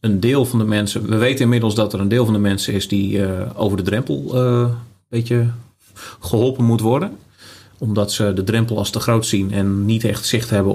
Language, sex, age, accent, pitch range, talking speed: Dutch, male, 40-59, Dutch, 100-115 Hz, 225 wpm